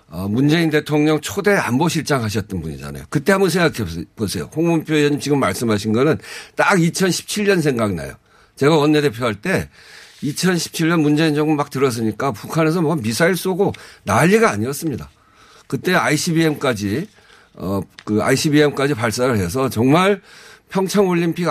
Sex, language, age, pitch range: male, Korean, 50-69, 110-155 Hz